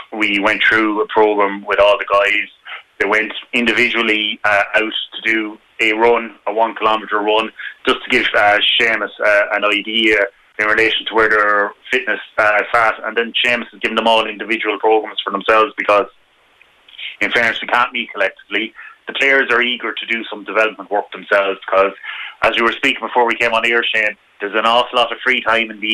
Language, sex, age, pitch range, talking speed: English, male, 30-49, 105-120 Hz, 195 wpm